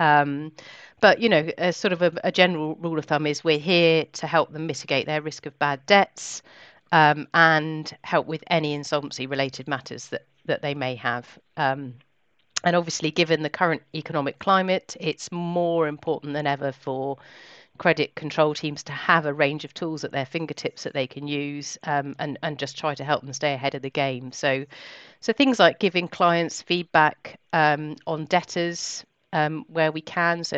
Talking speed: 190 wpm